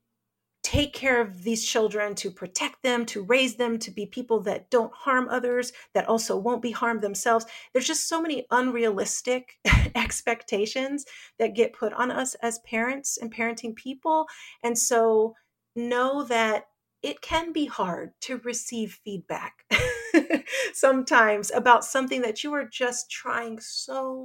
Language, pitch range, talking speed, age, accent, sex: English, 210-250 Hz, 150 wpm, 40-59, American, female